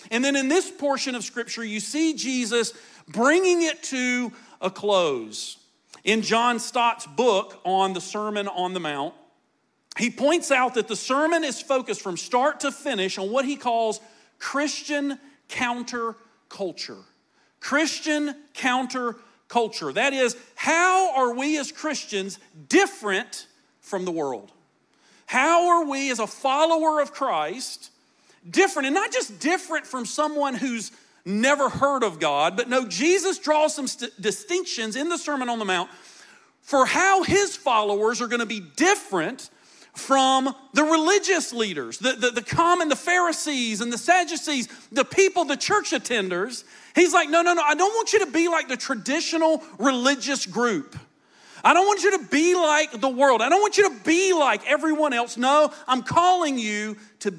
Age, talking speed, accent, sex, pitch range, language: 40-59, 160 wpm, American, male, 230-320 Hz, English